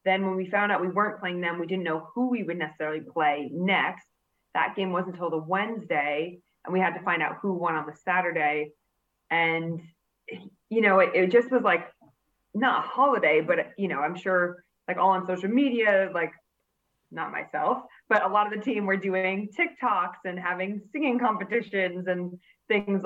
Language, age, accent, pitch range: English, 20-39, American, 165-200 Hz